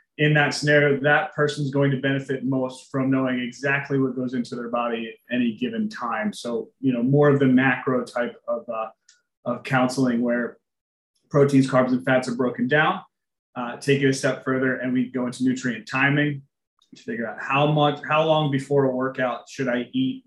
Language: English